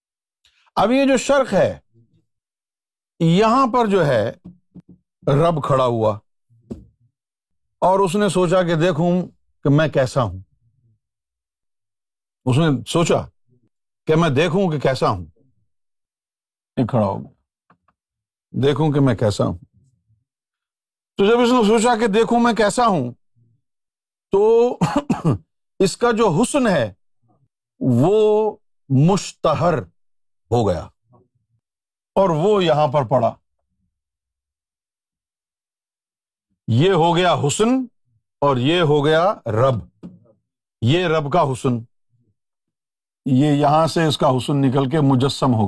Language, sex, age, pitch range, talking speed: Urdu, male, 50-69, 115-185 Hz, 115 wpm